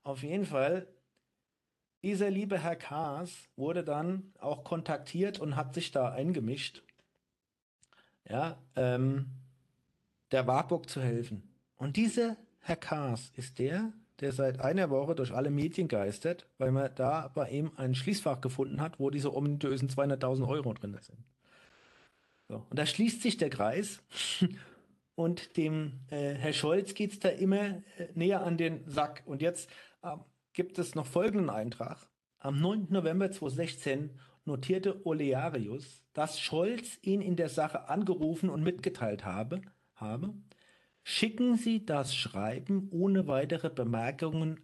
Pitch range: 130-180 Hz